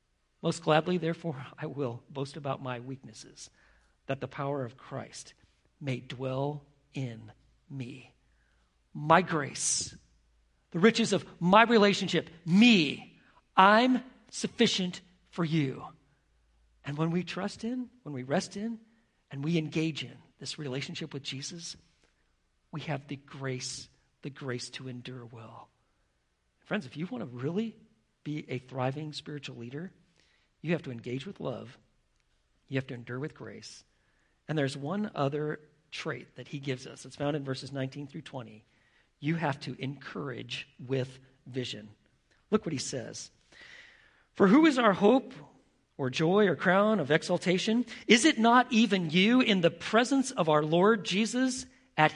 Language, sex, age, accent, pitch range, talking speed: English, male, 50-69, American, 130-190 Hz, 150 wpm